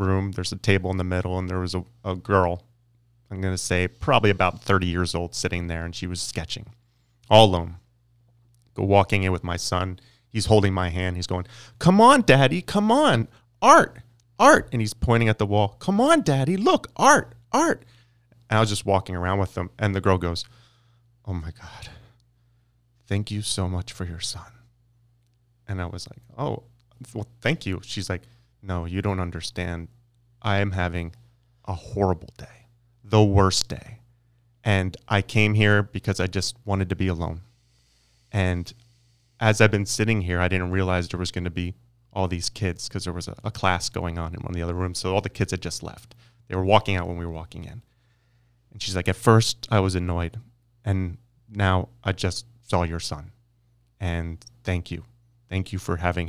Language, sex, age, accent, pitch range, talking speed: English, male, 30-49, American, 90-120 Hz, 195 wpm